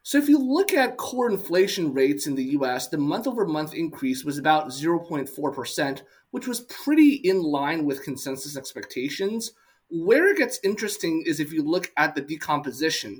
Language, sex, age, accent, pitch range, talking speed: English, male, 30-49, American, 150-215 Hz, 165 wpm